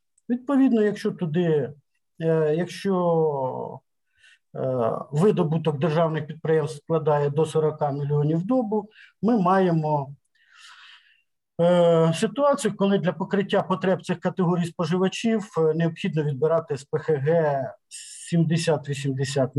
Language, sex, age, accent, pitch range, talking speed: Ukrainian, male, 50-69, native, 140-180 Hz, 85 wpm